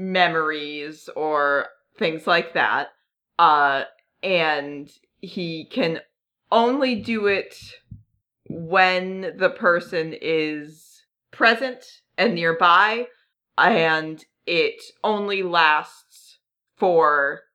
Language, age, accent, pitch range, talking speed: English, 30-49, American, 165-250 Hz, 80 wpm